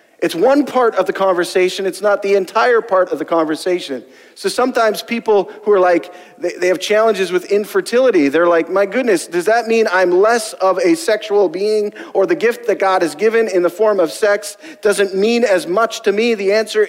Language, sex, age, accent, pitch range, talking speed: English, male, 40-59, American, 170-225 Hz, 205 wpm